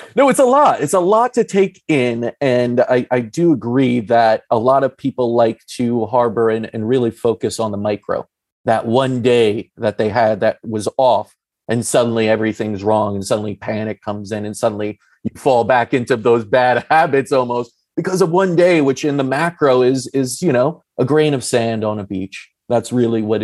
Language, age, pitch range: English, 30-49, 110-140 Hz